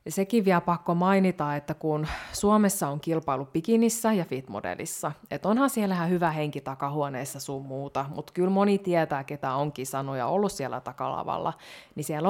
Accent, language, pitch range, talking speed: native, Finnish, 140-180 Hz, 155 wpm